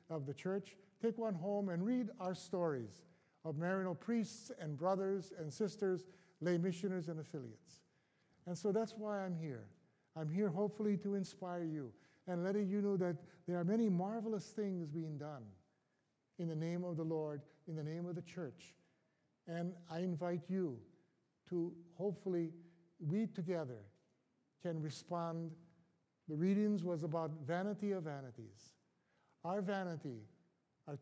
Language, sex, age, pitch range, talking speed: English, male, 50-69, 150-185 Hz, 150 wpm